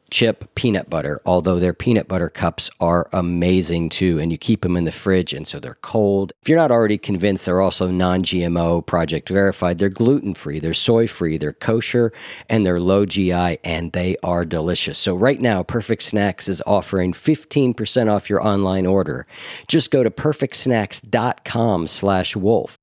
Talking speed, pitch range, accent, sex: 170 wpm, 90-115 Hz, American, male